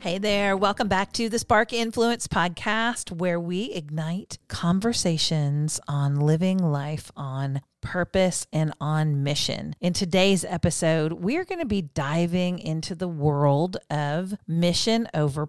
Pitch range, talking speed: 150-195 Hz, 135 wpm